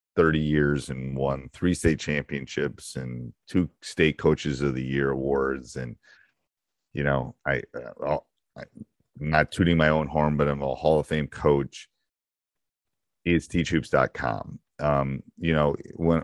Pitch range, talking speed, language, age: 70-80 Hz, 140 wpm, English, 30-49